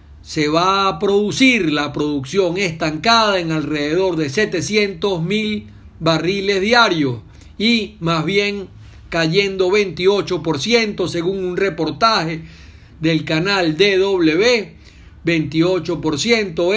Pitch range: 160-210 Hz